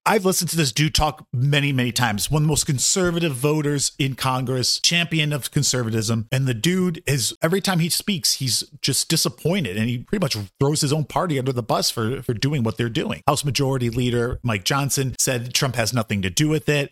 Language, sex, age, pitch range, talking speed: English, male, 30-49, 115-150 Hz, 215 wpm